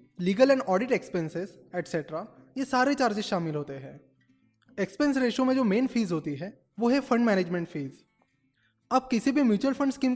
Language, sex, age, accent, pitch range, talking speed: Hindi, male, 20-39, native, 175-255 Hz, 175 wpm